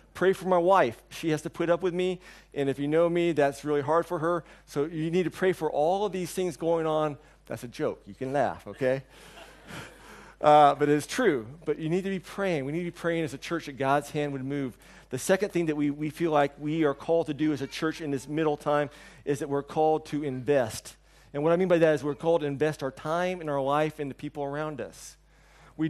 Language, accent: English, American